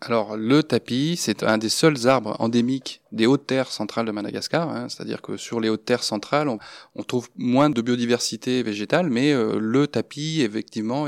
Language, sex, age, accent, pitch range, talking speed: French, male, 20-39, French, 110-135 Hz, 190 wpm